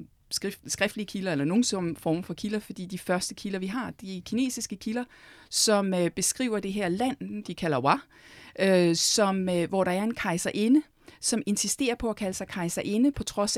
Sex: female